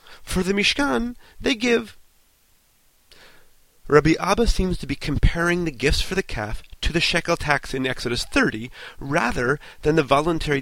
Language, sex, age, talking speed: English, male, 30-49, 155 wpm